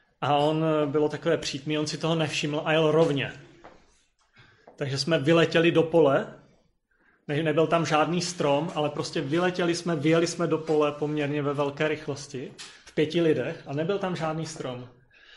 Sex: male